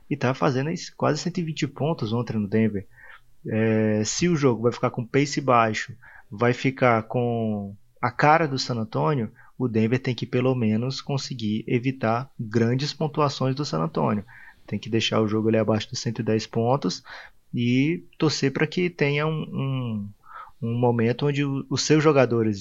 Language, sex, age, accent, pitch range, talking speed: Portuguese, male, 20-39, Brazilian, 115-140 Hz, 160 wpm